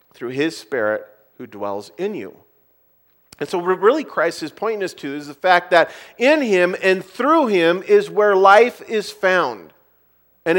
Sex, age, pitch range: male, 40-59, 160-210 Hz